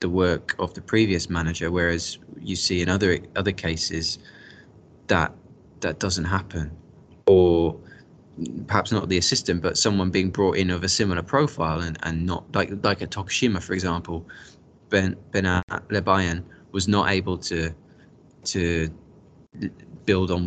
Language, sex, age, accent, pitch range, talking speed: English, male, 20-39, British, 85-100 Hz, 145 wpm